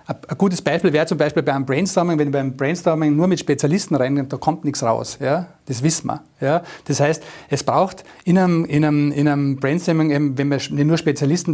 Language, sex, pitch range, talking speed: German, male, 135-165 Hz, 225 wpm